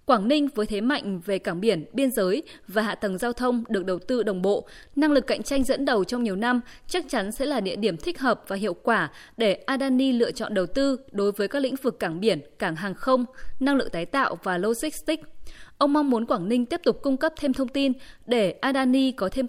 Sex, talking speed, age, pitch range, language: female, 240 wpm, 20-39, 195-265 Hz, Vietnamese